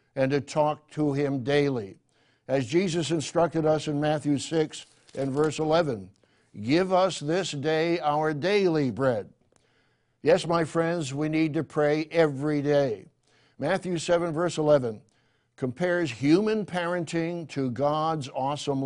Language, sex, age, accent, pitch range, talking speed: English, male, 60-79, American, 140-170 Hz, 135 wpm